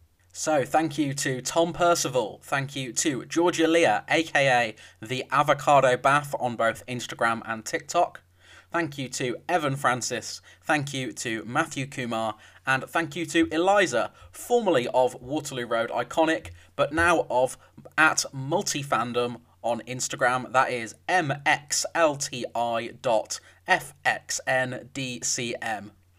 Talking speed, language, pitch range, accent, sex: 115 wpm, English, 115-155 Hz, British, male